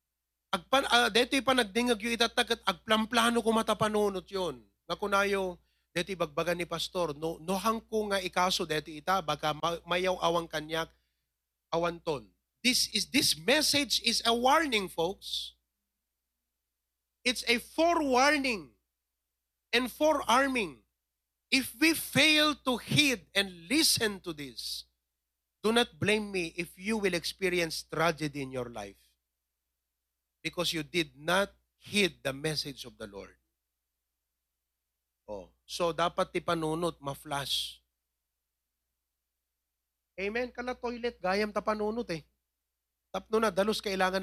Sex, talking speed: male, 120 wpm